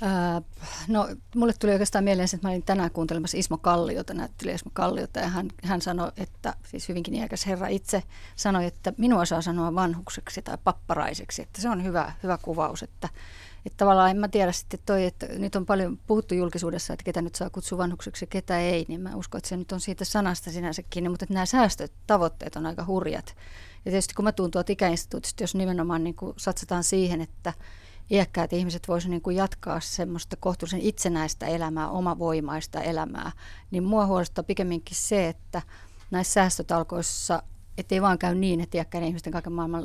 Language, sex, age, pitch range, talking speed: Finnish, female, 30-49, 165-190 Hz, 180 wpm